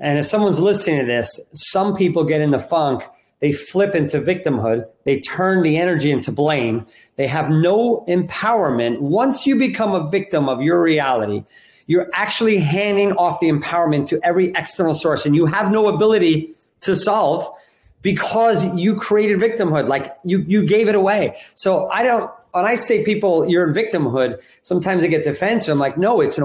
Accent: American